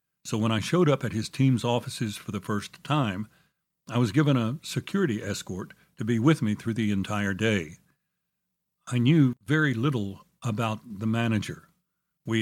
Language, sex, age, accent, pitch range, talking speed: English, male, 60-79, American, 105-140 Hz, 170 wpm